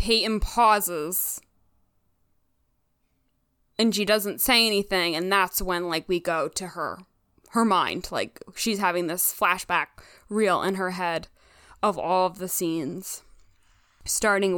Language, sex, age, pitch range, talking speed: English, female, 20-39, 175-225 Hz, 130 wpm